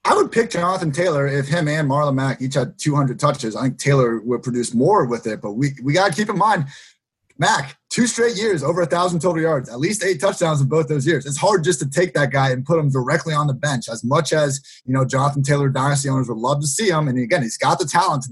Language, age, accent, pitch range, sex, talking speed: English, 30-49, American, 140-180 Hz, male, 260 wpm